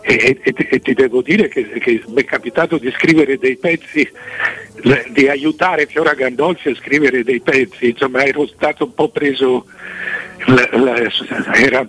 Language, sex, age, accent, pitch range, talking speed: Italian, male, 60-79, native, 130-180 Hz, 160 wpm